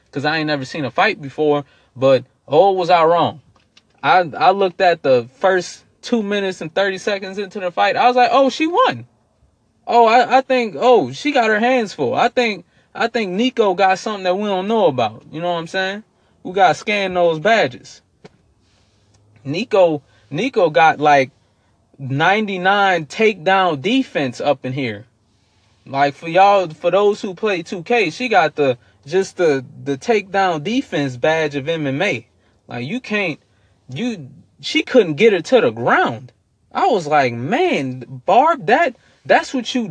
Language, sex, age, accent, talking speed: English, male, 20-39, American, 175 wpm